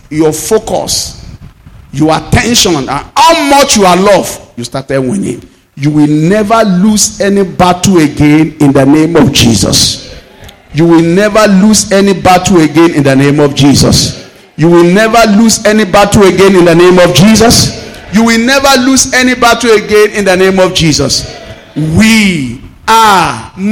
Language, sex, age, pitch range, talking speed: English, male, 50-69, 140-215 Hz, 160 wpm